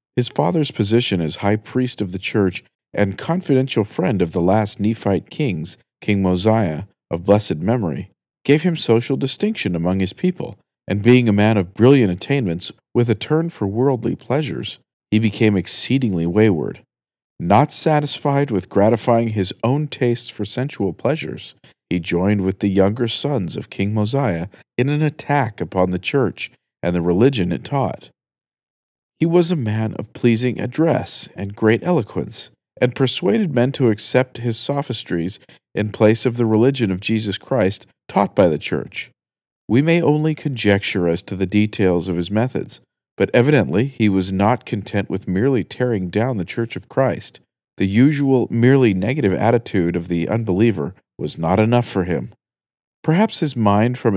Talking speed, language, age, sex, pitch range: 165 wpm, English, 50-69, male, 95-130 Hz